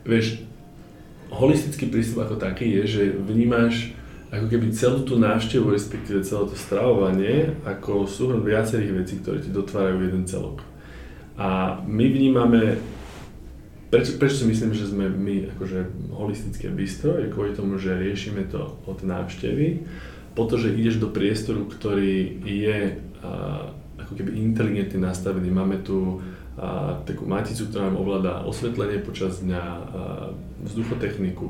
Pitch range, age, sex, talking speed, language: 95-115 Hz, 20-39, male, 130 wpm, Slovak